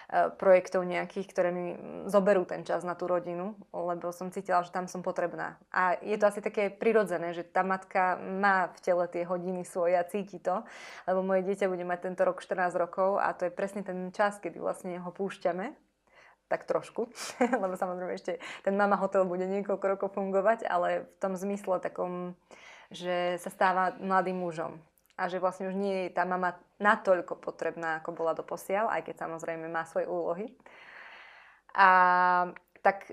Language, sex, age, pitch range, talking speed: Slovak, female, 20-39, 175-195 Hz, 175 wpm